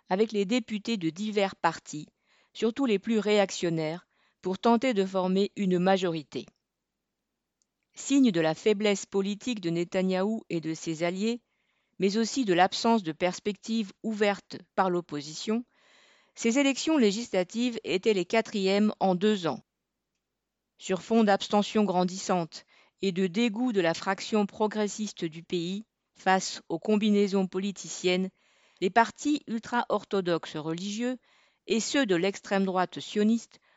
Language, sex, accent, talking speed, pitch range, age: French, female, French, 130 wpm, 180-225 Hz, 40-59